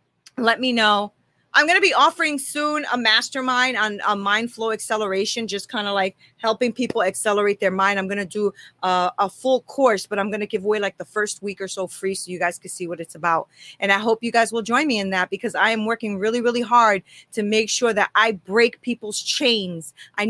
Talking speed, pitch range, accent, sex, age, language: 235 wpm, 200-245 Hz, American, female, 30-49, English